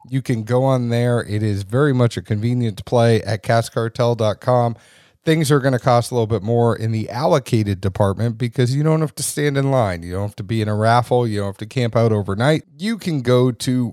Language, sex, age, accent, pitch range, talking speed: English, male, 40-59, American, 105-135 Hz, 235 wpm